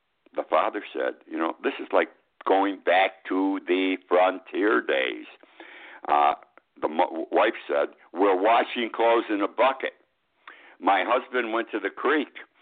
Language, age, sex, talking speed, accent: English, 60-79, male, 145 wpm, American